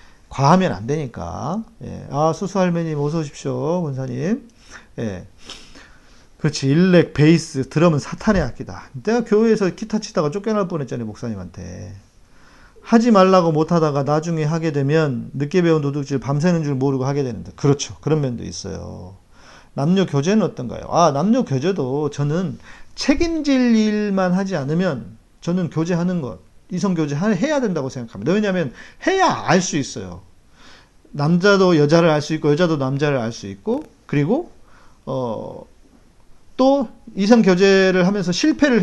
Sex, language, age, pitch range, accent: male, Korean, 40-59, 135-195 Hz, native